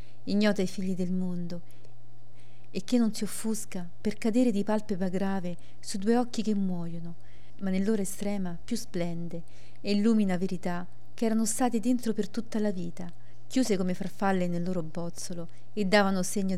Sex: female